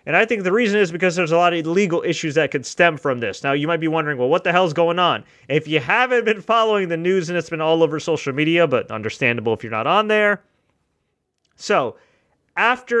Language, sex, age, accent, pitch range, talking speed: English, male, 30-49, American, 135-175 Hz, 240 wpm